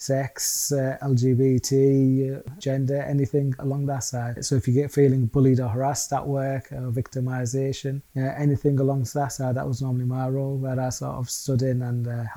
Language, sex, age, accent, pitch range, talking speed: English, male, 20-39, British, 125-140 Hz, 190 wpm